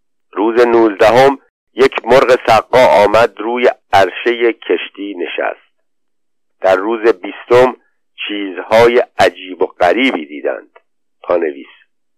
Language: Persian